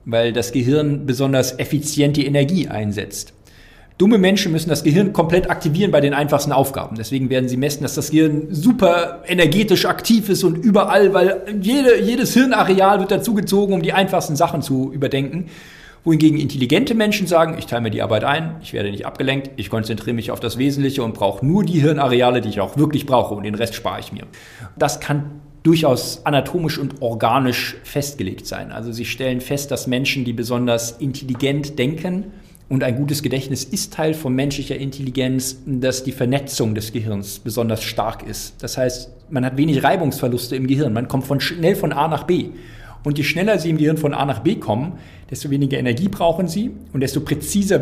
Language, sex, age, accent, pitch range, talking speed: German, male, 40-59, German, 125-165 Hz, 190 wpm